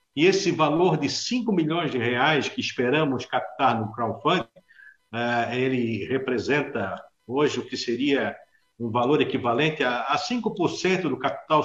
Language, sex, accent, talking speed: Portuguese, male, Brazilian, 135 wpm